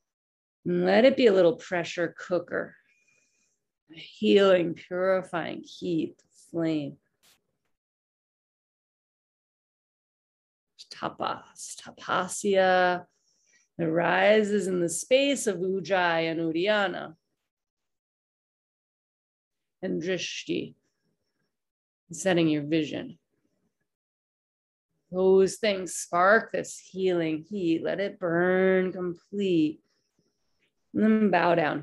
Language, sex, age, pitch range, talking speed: English, female, 40-59, 170-205 Hz, 75 wpm